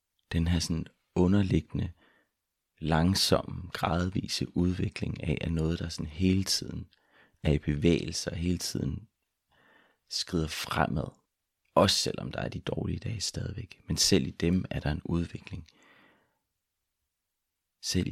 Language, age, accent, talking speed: Danish, 30-49, native, 130 wpm